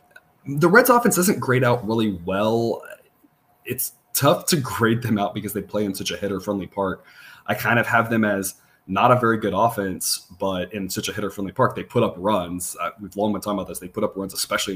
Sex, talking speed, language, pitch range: male, 230 wpm, English, 95-115 Hz